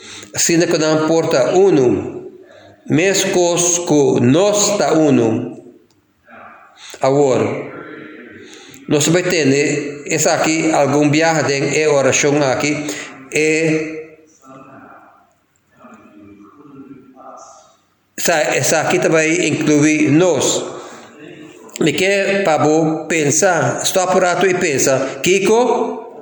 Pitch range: 140-185 Hz